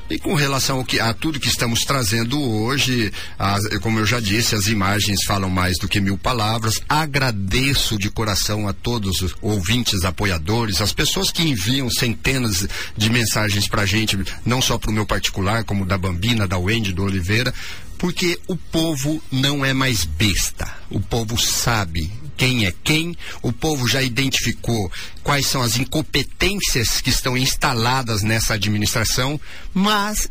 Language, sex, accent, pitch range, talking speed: Portuguese, male, Brazilian, 105-145 Hz, 160 wpm